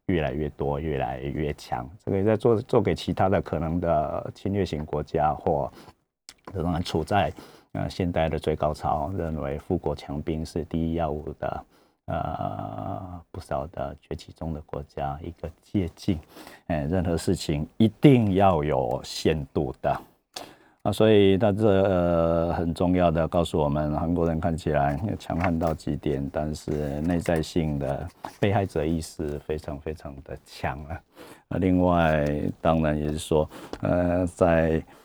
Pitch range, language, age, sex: 75-95 Hz, Chinese, 50-69, male